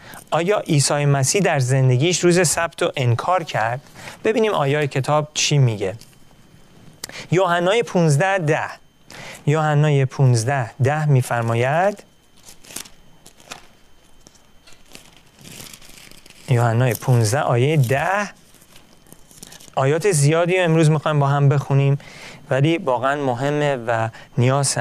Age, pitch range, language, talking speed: 40-59, 130-170 Hz, Persian, 90 wpm